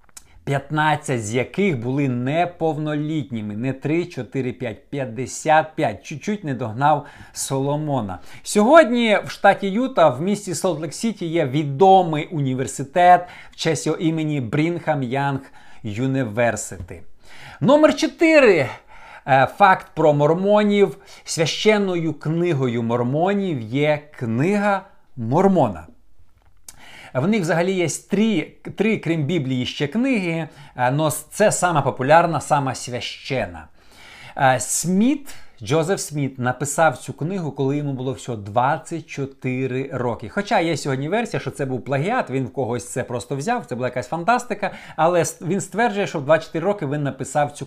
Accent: native